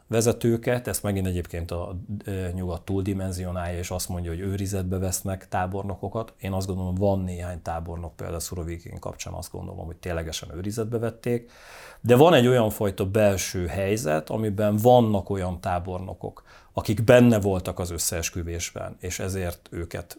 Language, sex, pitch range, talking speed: Hungarian, male, 90-115 Hz, 145 wpm